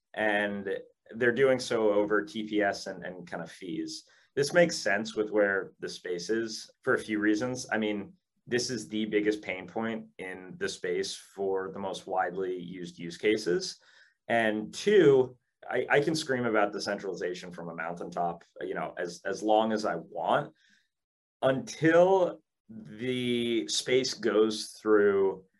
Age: 30-49